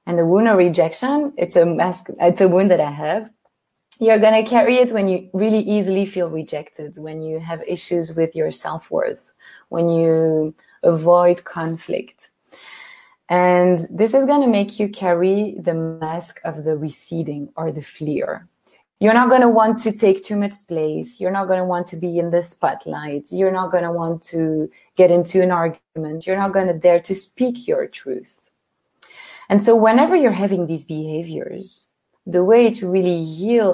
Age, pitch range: 20-39, 165-210 Hz